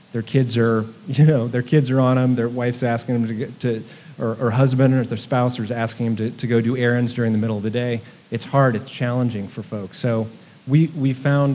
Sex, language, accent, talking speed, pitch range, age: male, English, American, 245 wpm, 110-130 Hz, 30-49